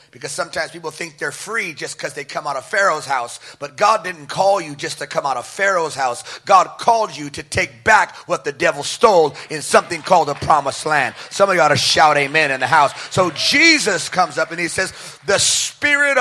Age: 30-49